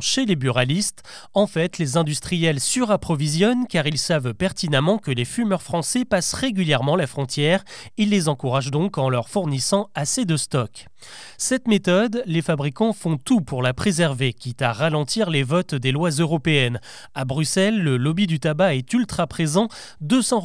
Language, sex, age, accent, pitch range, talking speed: French, male, 30-49, French, 145-200 Hz, 165 wpm